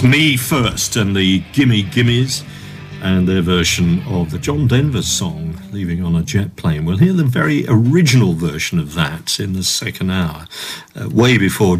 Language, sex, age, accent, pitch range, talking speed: English, male, 50-69, British, 85-115 Hz, 175 wpm